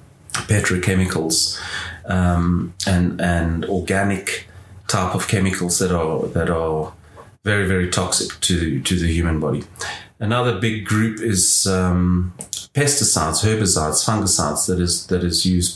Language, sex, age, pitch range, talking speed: English, male, 30-49, 90-110 Hz, 125 wpm